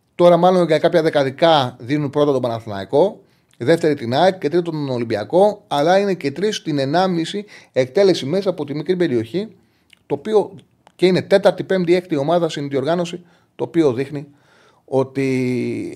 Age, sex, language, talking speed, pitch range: 30-49, male, Greek, 155 wpm, 120-170 Hz